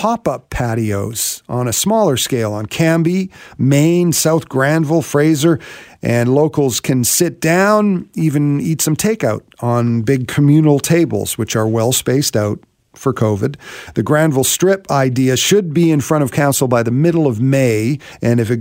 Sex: male